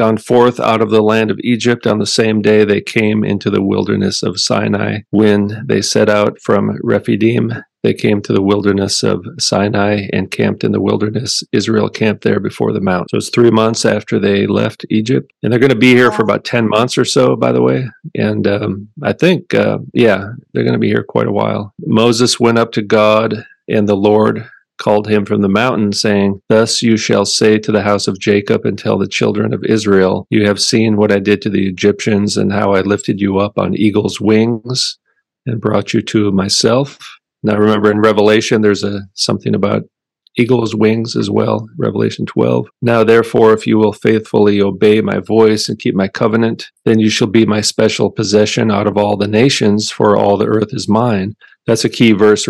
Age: 40-59